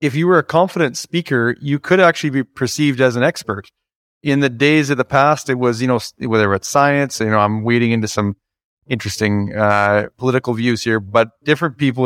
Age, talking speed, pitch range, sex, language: 30-49, 205 wpm, 120-145 Hz, male, English